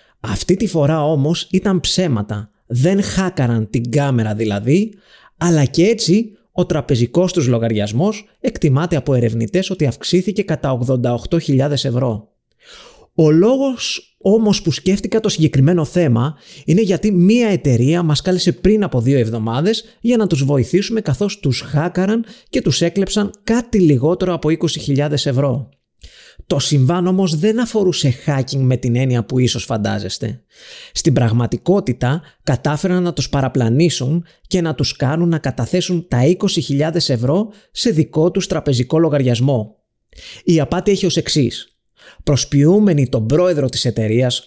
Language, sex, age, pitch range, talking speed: Greek, male, 30-49, 130-185 Hz, 135 wpm